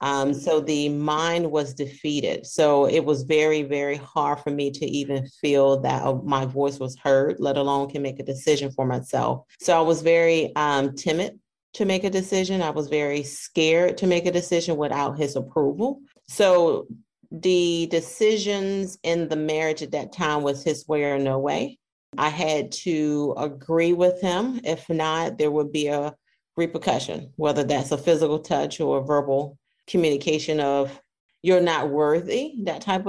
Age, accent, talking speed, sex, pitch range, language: 40-59, American, 170 wpm, female, 140-165 Hz, English